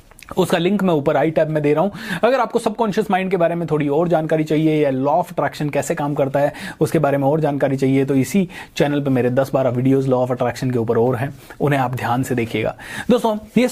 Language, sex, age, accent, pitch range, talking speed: Hindi, male, 30-49, native, 160-220 Hz, 235 wpm